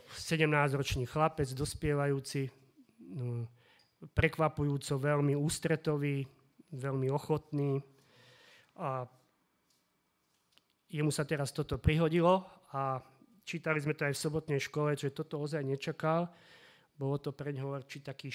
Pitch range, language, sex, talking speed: 140-165 Hz, Slovak, male, 110 wpm